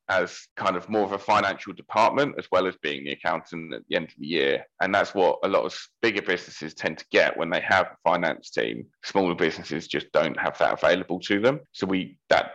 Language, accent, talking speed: English, British, 235 wpm